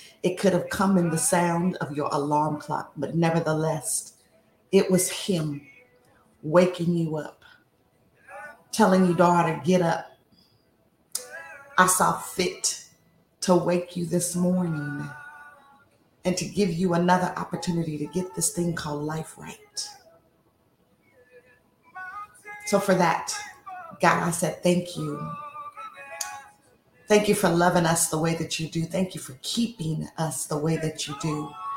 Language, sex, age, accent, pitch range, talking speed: English, female, 40-59, American, 165-200 Hz, 140 wpm